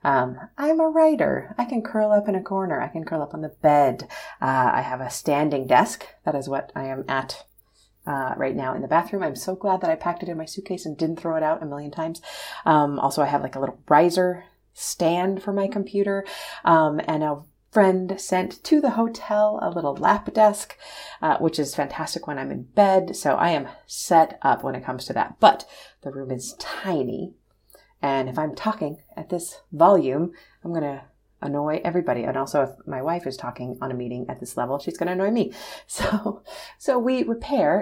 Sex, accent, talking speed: female, American, 215 wpm